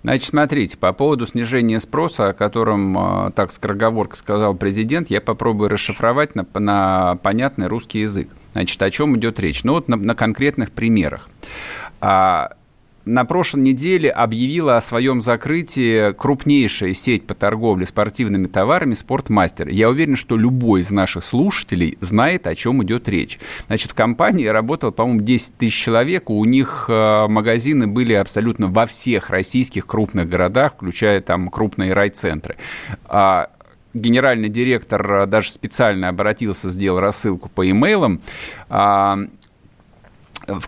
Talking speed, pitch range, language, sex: 135 wpm, 105-135 Hz, Russian, male